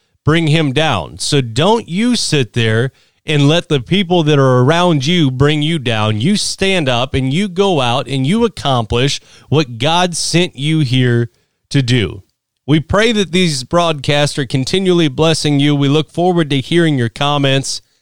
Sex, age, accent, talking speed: male, 30-49, American, 175 wpm